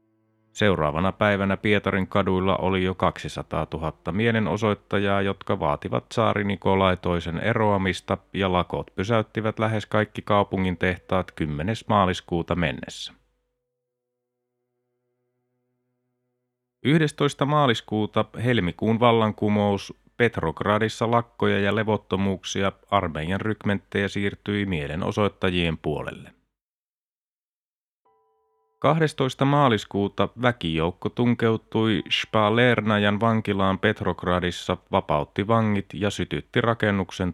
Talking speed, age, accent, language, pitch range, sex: 75 wpm, 30-49, native, Finnish, 95-120 Hz, male